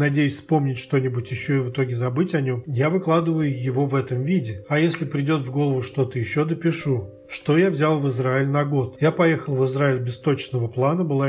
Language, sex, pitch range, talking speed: Russian, male, 130-155 Hz, 205 wpm